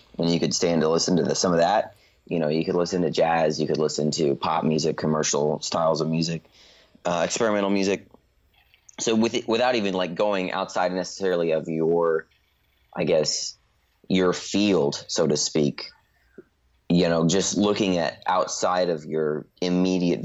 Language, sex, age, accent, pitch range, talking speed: English, male, 30-49, American, 80-90 Hz, 165 wpm